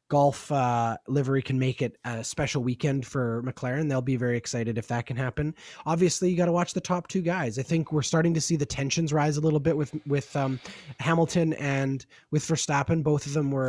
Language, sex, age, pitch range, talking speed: English, male, 20-39, 115-150 Hz, 225 wpm